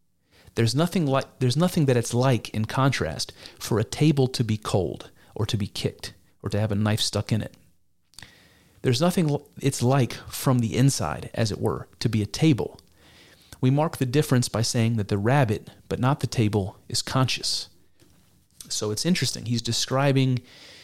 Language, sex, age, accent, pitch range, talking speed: English, male, 30-49, American, 105-140 Hz, 180 wpm